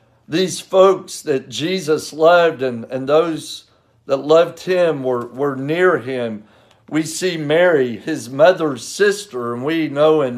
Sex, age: male, 50-69